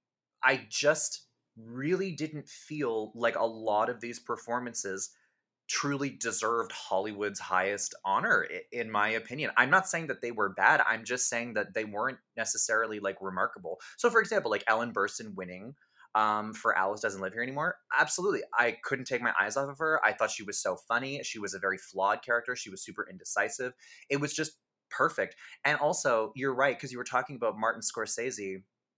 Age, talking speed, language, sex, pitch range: 20-39, 185 wpm, English, male, 105-140 Hz